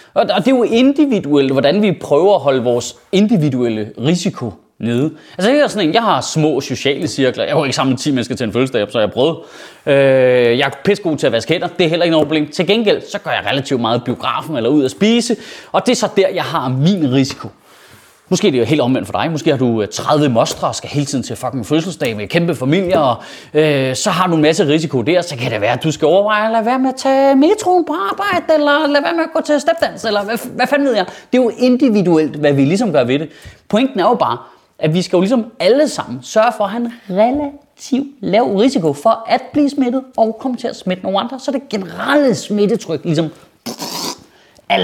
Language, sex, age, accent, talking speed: Danish, male, 30-49, native, 240 wpm